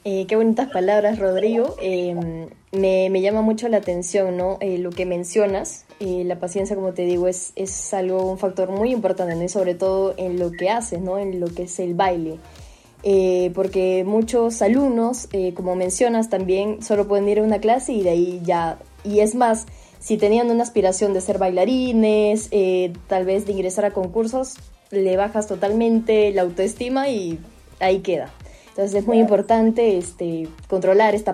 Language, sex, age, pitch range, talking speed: Spanish, female, 10-29, 185-225 Hz, 180 wpm